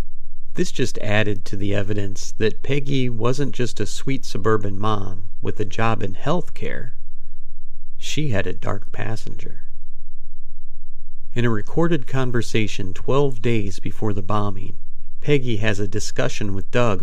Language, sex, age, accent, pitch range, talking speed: English, male, 50-69, American, 95-120 Hz, 140 wpm